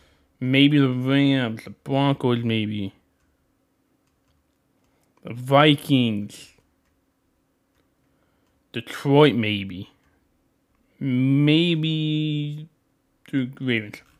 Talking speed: 55 wpm